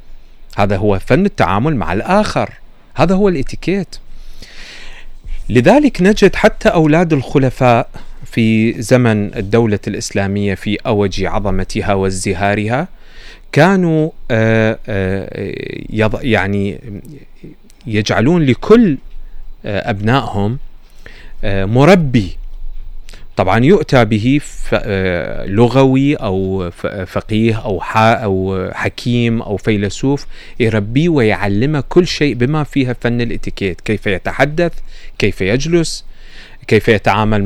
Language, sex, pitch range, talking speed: Arabic, male, 100-140 Hz, 85 wpm